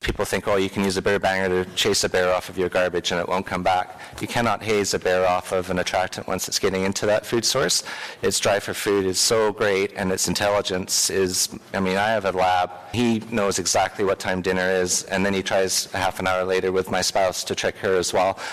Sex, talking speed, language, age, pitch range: male, 255 wpm, English, 30-49, 95-110 Hz